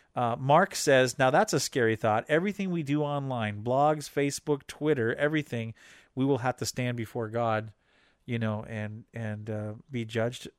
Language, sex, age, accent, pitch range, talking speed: English, male, 40-59, American, 115-150 Hz, 170 wpm